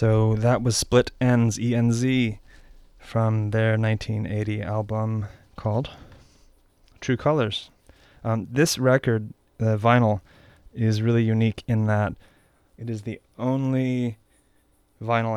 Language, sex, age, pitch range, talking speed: English, male, 20-39, 105-115 Hz, 110 wpm